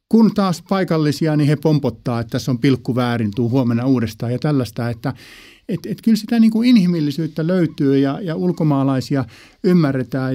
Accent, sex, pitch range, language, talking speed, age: native, male, 135-195 Hz, Finnish, 170 wpm, 50-69